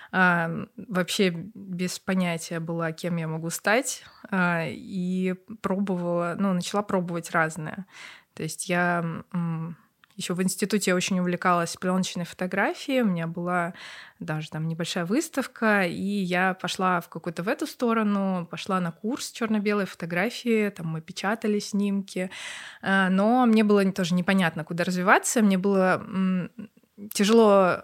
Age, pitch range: 20-39, 175-210 Hz